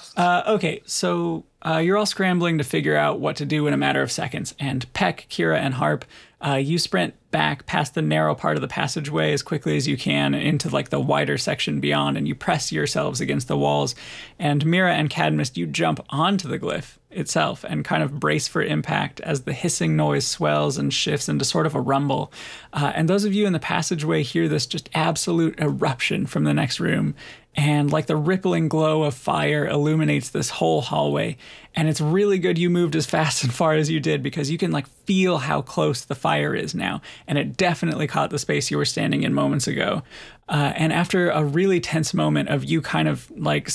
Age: 30-49